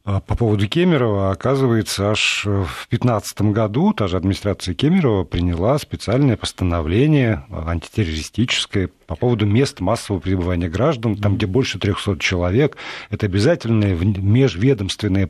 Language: Russian